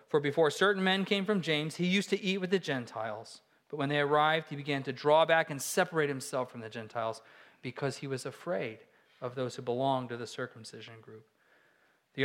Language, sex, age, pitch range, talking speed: English, male, 40-59, 135-180 Hz, 205 wpm